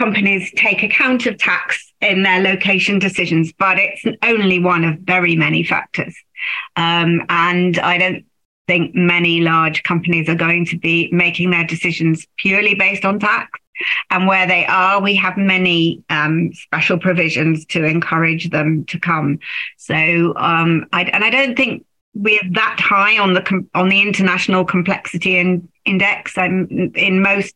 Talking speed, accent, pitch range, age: 155 wpm, British, 165-190 Hz, 40-59